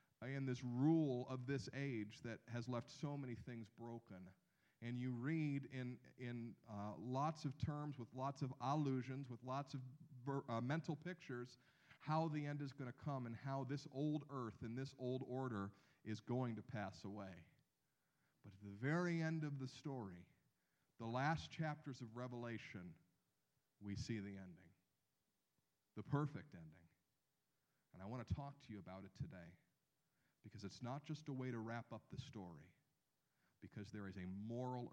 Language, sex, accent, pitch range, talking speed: English, male, American, 105-145 Hz, 170 wpm